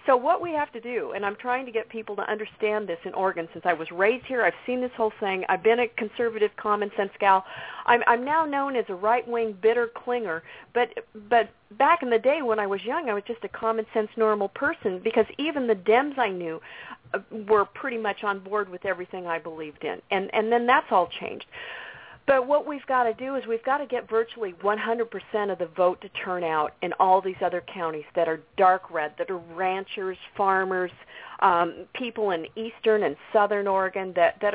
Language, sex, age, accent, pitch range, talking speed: English, female, 50-69, American, 180-225 Hz, 210 wpm